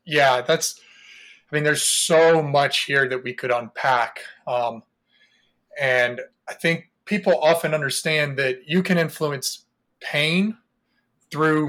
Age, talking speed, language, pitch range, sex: 20-39, 130 wpm, English, 130-165 Hz, male